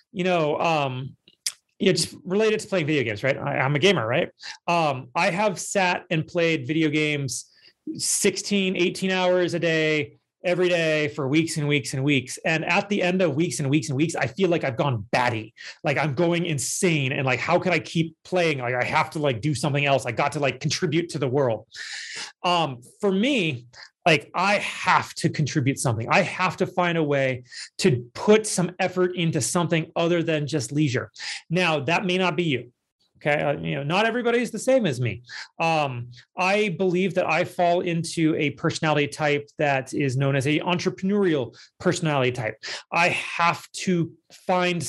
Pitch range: 145-180 Hz